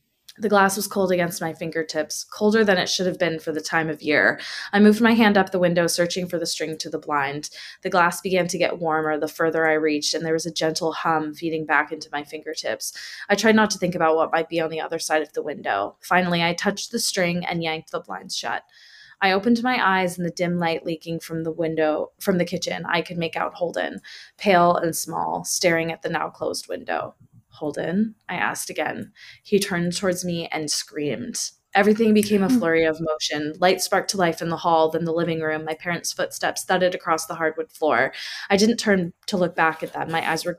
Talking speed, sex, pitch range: 225 wpm, female, 160-185 Hz